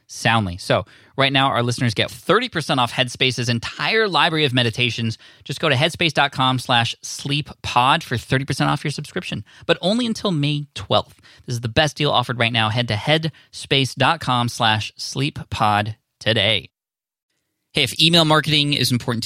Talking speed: 165 wpm